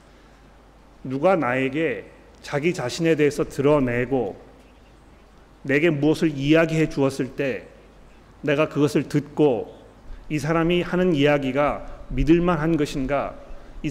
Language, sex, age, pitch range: Korean, male, 40-59, 145-185 Hz